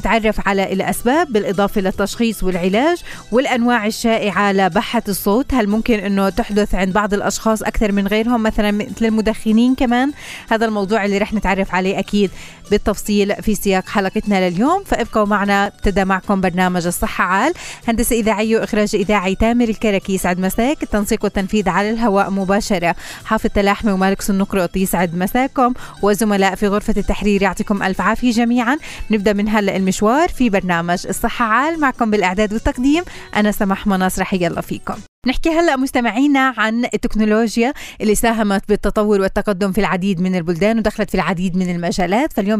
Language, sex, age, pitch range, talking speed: Arabic, female, 20-39, 190-225 Hz, 145 wpm